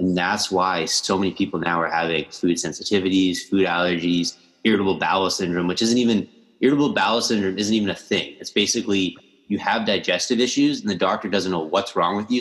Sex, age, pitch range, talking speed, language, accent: male, 20-39, 90-105 Hz, 200 wpm, English, American